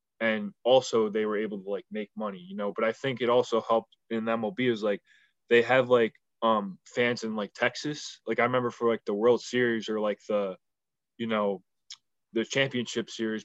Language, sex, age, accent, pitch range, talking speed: English, male, 20-39, American, 105-120 Hz, 200 wpm